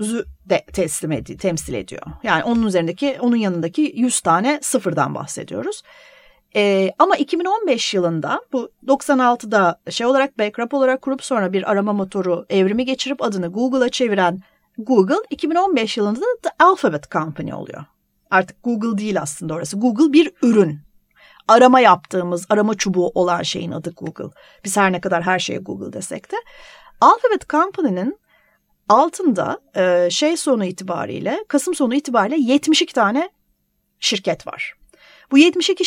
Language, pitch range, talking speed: Turkish, 195-300 Hz, 140 wpm